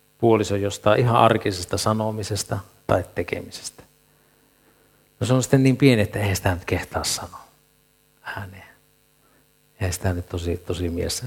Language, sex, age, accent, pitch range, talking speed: Finnish, male, 60-79, native, 95-130 Hz, 140 wpm